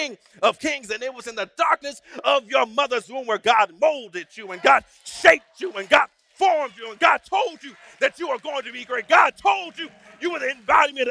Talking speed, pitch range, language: 225 wpm, 250-330 Hz, English